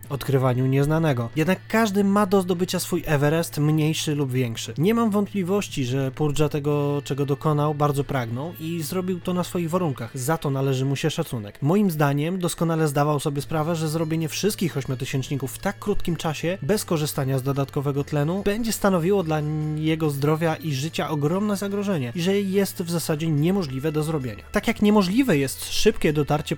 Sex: male